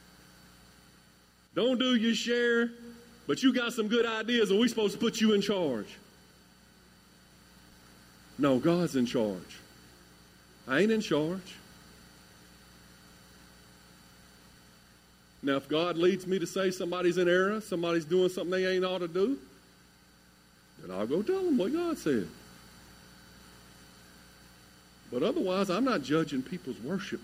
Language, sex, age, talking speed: English, male, 50-69, 130 wpm